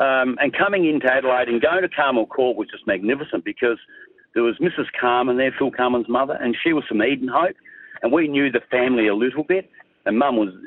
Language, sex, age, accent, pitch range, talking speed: English, male, 60-79, Australian, 110-140 Hz, 220 wpm